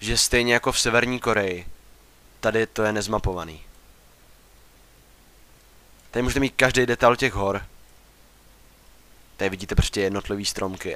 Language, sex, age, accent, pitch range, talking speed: Czech, male, 20-39, native, 95-115 Hz, 120 wpm